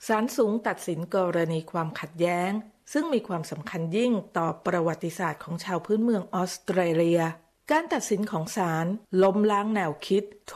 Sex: female